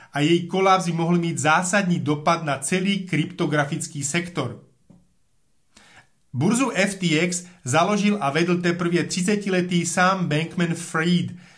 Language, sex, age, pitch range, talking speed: Slovak, male, 30-49, 165-190 Hz, 110 wpm